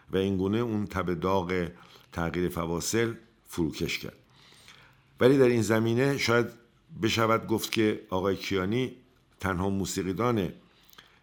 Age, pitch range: 50-69, 85-115 Hz